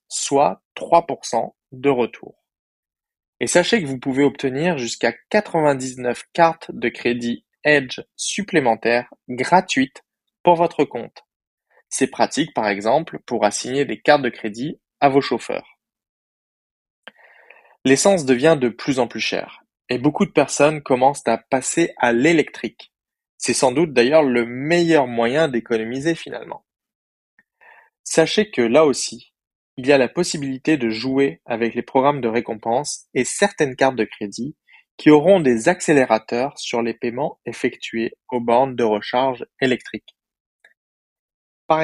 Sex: male